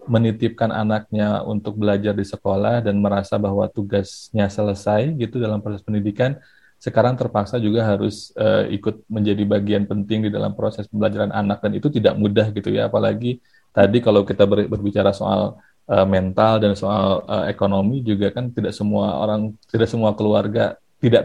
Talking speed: 160 wpm